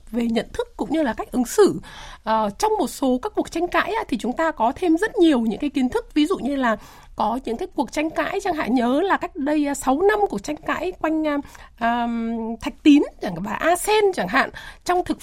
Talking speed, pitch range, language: 235 wpm, 235-345 Hz, Vietnamese